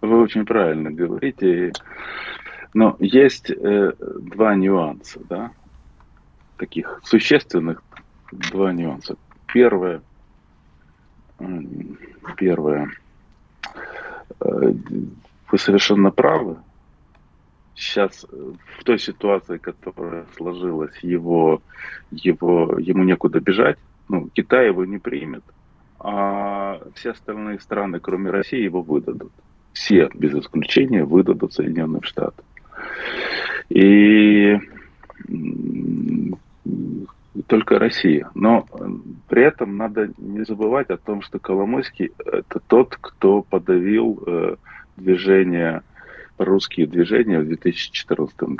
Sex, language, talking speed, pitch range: male, Russian, 90 wpm, 80-100 Hz